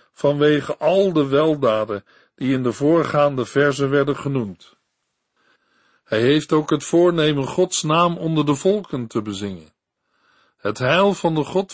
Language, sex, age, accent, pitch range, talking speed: Dutch, male, 50-69, Dutch, 135-170 Hz, 145 wpm